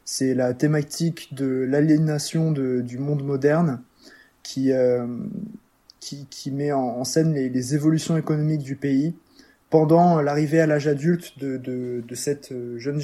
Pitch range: 135-160 Hz